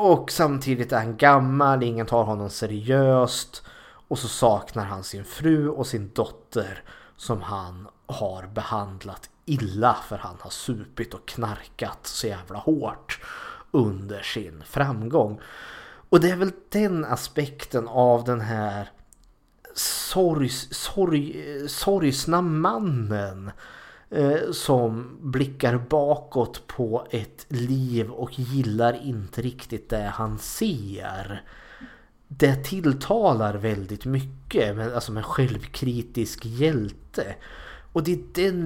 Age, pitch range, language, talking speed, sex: 30-49, 110-145 Hz, Swedish, 110 wpm, male